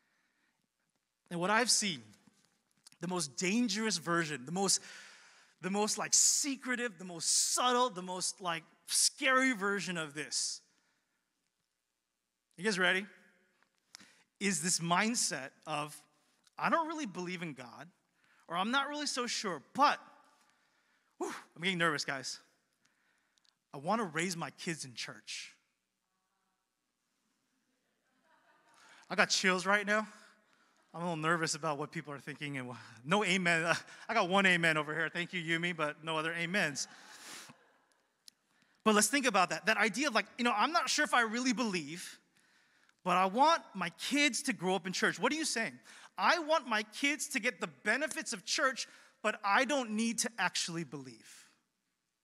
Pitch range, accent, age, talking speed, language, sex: 170-250 Hz, American, 30-49, 155 wpm, English, male